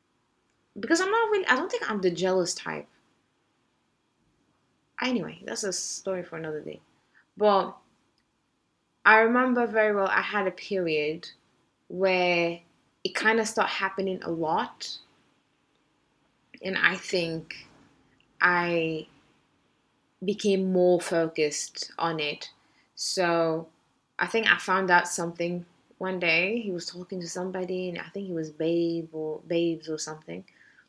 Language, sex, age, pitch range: English, female, 20-39, 175-220 Hz